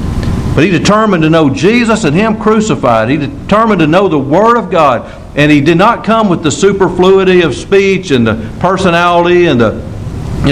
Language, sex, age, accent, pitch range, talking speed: English, male, 60-79, American, 110-160 Hz, 190 wpm